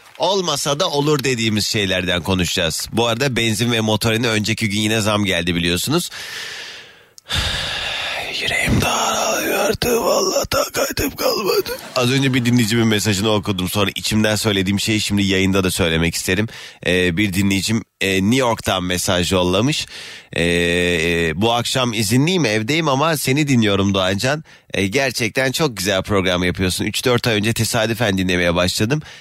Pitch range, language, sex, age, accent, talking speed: 110-170 Hz, Turkish, male, 30-49, native, 140 wpm